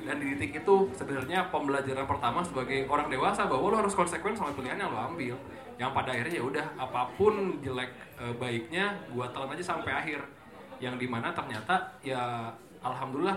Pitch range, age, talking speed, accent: 125-155 Hz, 20-39, 165 wpm, native